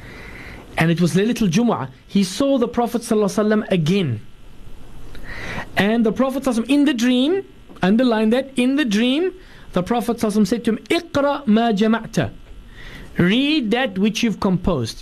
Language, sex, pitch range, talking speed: English, male, 150-215 Hz, 150 wpm